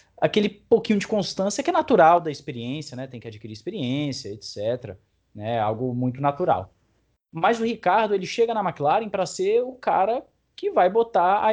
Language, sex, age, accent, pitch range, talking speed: Portuguese, male, 20-39, Brazilian, 135-215 Hz, 175 wpm